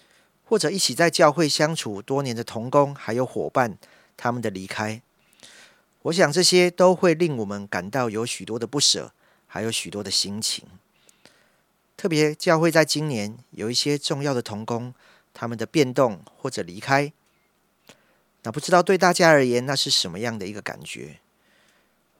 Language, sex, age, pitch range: Chinese, male, 40-59, 115-165 Hz